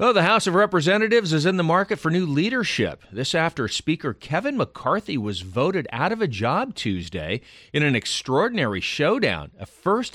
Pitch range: 110-160 Hz